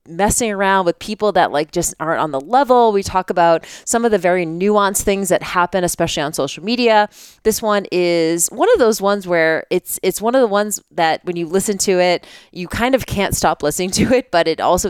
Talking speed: 230 wpm